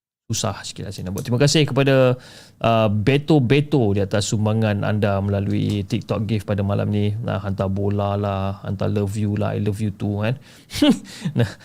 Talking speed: 175 wpm